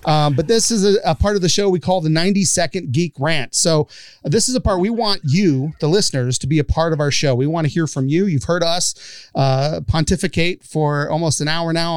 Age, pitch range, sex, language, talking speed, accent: 40-59, 145-180 Hz, male, English, 250 wpm, American